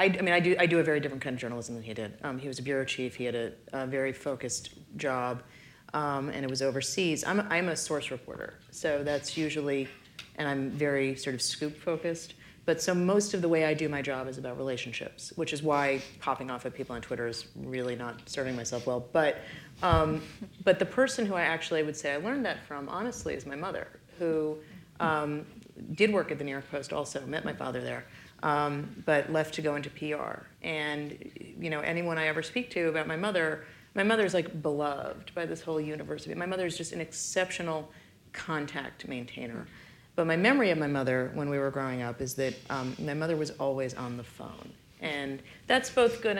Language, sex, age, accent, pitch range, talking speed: English, female, 30-49, American, 135-170 Hz, 215 wpm